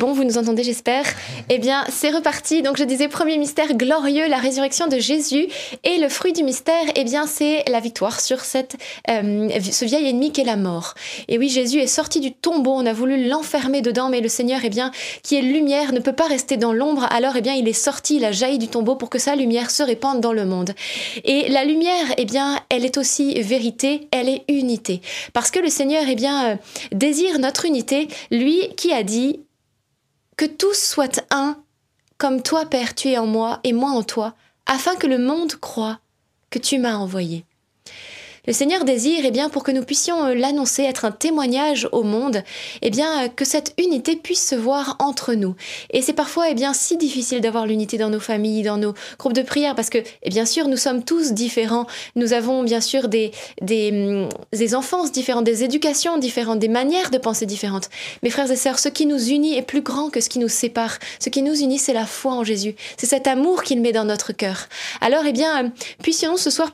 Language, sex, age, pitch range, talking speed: French, female, 20-39, 235-290 Hz, 220 wpm